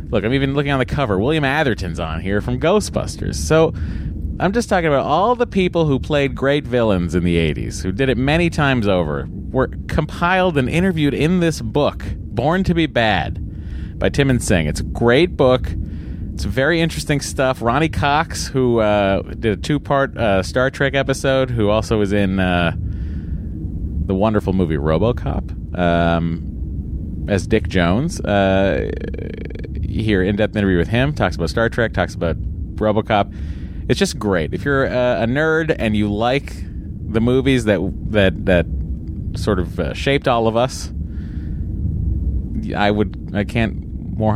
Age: 30-49